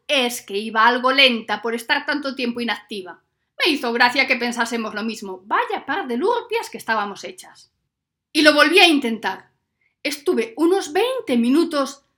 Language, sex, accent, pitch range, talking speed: Spanish, female, Spanish, 240-320 Hz, 165 wpm